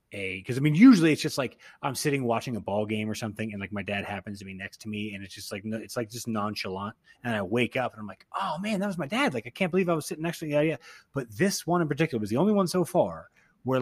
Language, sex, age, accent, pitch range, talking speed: English, male, 30-49, American, 105-145 Hz, 315 wpm